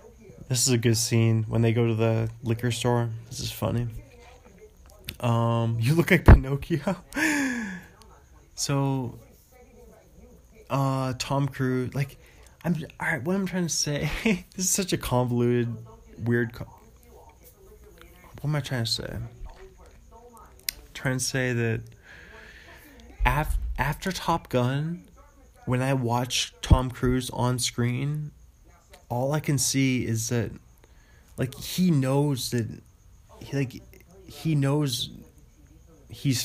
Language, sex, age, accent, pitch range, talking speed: English, male, 20-39, American, 115-140 Hz, 125 wpm